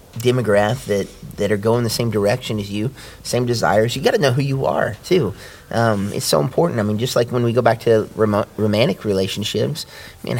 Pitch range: 100-115 Hz